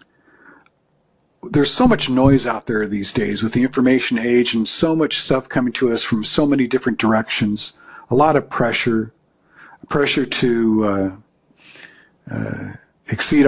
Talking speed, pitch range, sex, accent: 145 wpm, 110-135 Hz, male, American